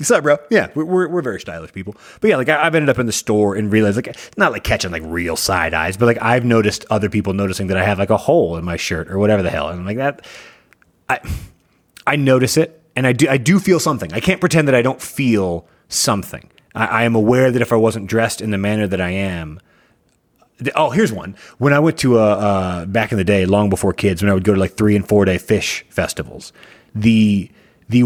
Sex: male